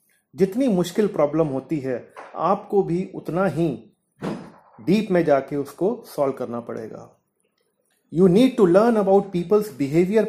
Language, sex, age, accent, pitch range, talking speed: Hindi, male, 30-49, native, 165-200 Hz, 135 wpm